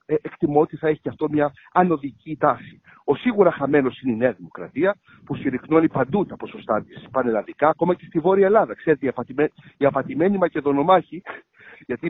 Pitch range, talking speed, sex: 130-190 Hz, 170 wpm, male